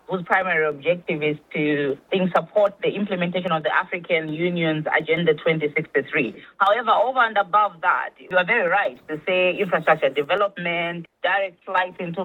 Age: 20-39